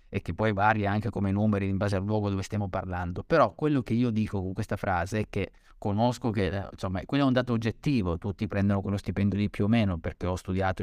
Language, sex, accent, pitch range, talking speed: Italian, male, native, 100-135 Hz, 240 wpm